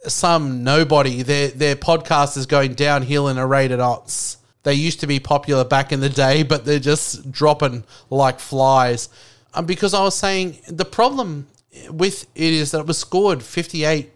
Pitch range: 140-190 Hz